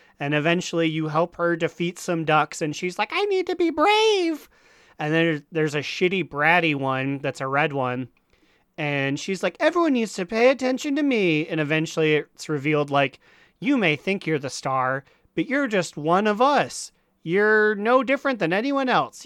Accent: American